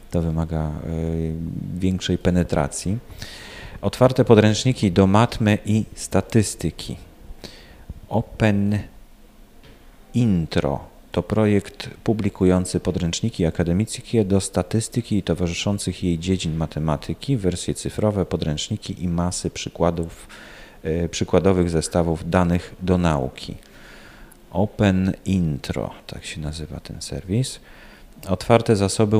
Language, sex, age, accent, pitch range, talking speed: Polish, male, 40-59, native, 85-105 Hz, 90 wpm